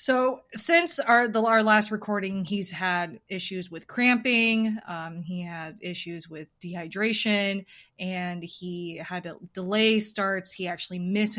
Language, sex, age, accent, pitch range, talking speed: English, female, 20-39, American, 175-205 Hz, 140 wpm